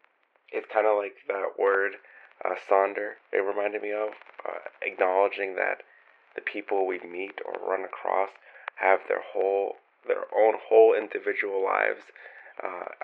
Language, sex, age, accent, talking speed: English, male, 30-49, American, 145 wpm